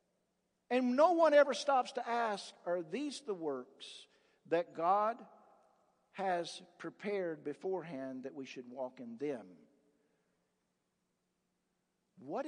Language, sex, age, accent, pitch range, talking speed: English, male, 50-69, American, 145-235 Hz, 110 wpm